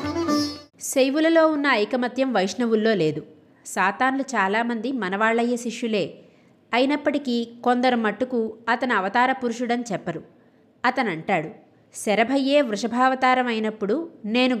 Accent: native